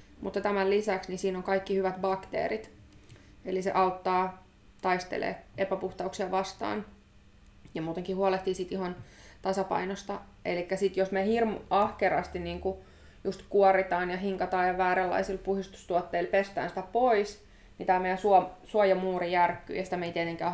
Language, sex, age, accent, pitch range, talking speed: Finnish, female, 20-39, native, 175-190 Hz, 140 wpm